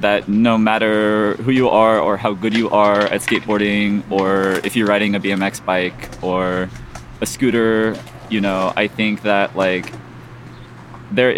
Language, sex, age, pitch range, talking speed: English, male, 20-39, 105-120 Hz, 160 wpm